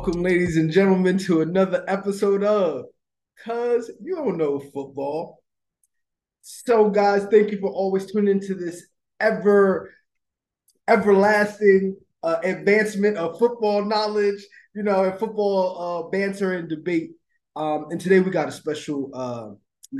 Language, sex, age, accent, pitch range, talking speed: English, male, 20-39, American, 155-200 Hz, 140 wpm